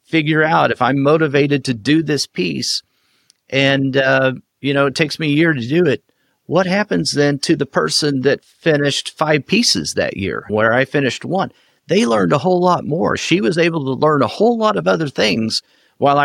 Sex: male